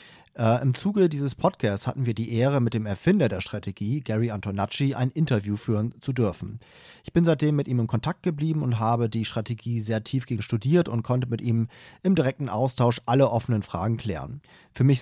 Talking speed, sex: 190 wpm, male